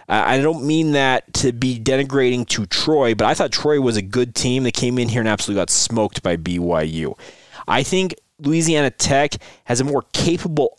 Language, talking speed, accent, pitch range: English, 195 wpm, American, 115-140 Hz